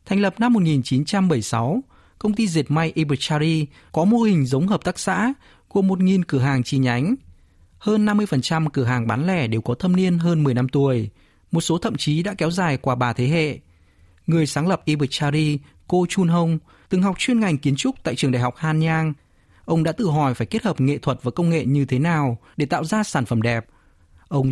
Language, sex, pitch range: Vietnamese, male, 130-180 Hz